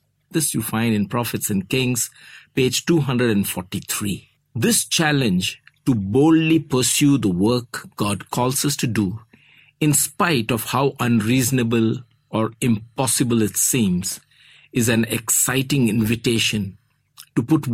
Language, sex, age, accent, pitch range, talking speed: English, male, 50-69, Indian, 110-145 Hz, 120 wpm